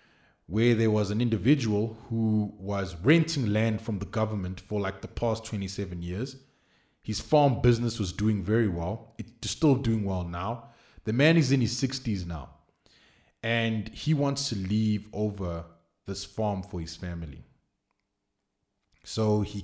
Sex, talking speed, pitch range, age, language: male, 155 wpm, 100-125 Hz, 20-39, English